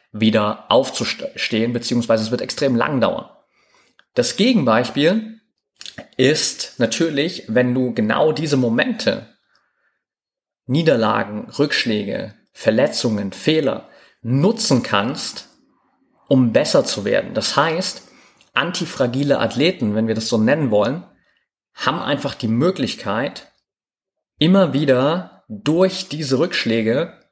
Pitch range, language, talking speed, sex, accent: 115-155 Hz, German, 100 wpm, male, German